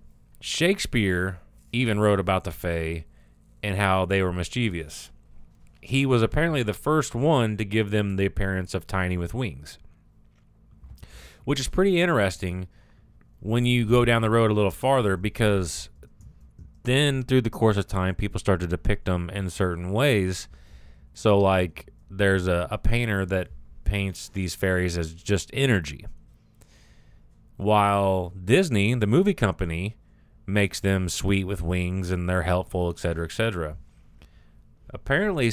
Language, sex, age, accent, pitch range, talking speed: English, male, 30-49, American, 90-110 Hz, 145 wpm